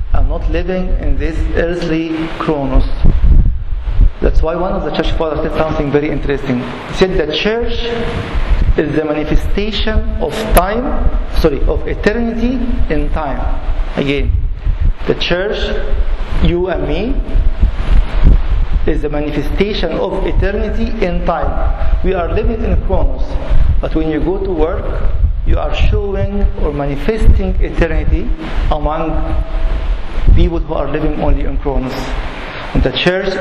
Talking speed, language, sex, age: 130 wpm, English, male, 50-69